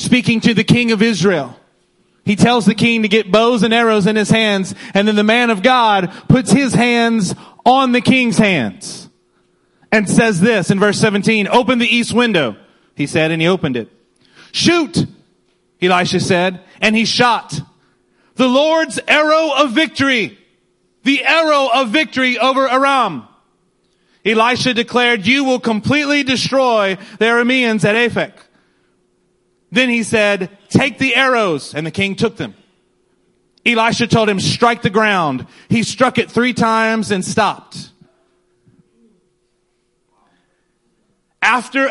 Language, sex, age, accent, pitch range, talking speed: English, male, 30-49, American, 195-255 Hz, 140 wpm